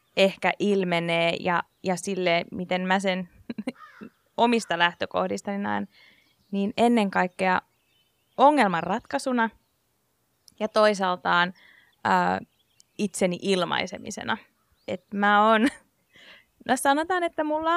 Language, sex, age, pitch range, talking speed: Finnish, female, 20-39, 190-250 Hz, 90 wpm